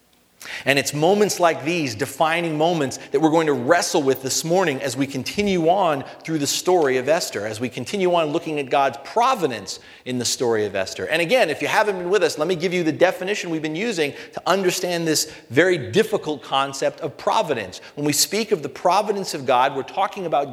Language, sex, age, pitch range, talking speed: English, male, 40-59, 135-185 Hz, 215 wpm